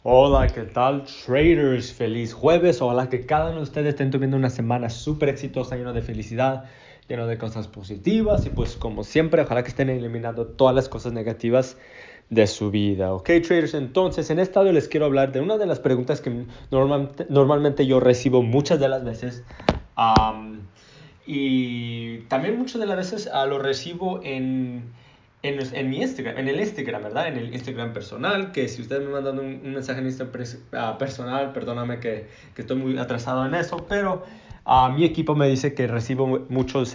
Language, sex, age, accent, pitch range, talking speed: Spanish, male, 20-39, Mexican, 120-145 Hz, 180 wpm